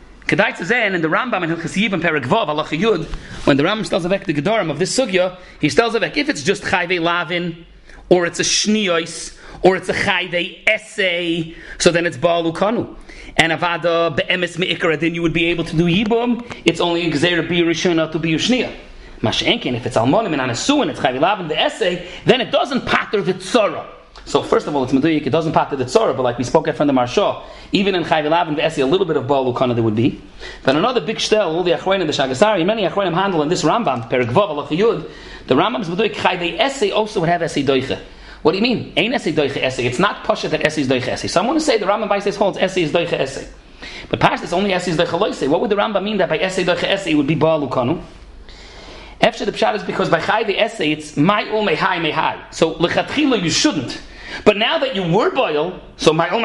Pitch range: 155-200 Hz